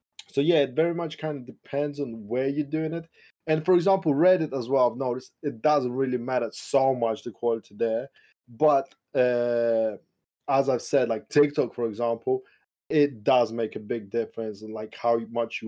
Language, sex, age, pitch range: English, male, 20-39, 120-150 Hz